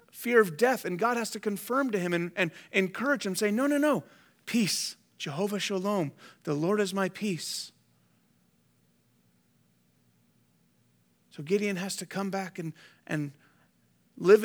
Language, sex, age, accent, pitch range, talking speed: English, male, 30-49, American, 145-215 Hz, 145 wpm